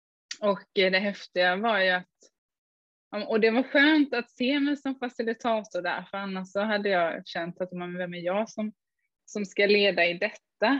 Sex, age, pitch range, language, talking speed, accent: female, 20-39, 180-225 Hz, Swedish, 180 wpm, native